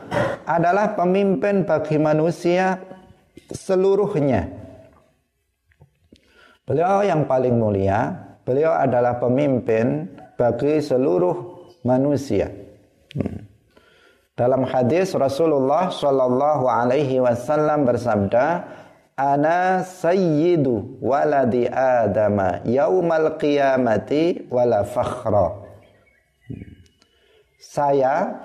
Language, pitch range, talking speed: Indonesian, 120-155 Hz, 60 wpm